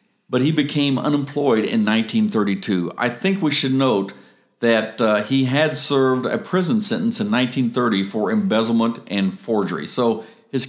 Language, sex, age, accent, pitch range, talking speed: English, male, 50-69, American, 115-155 Hz, 150 wpm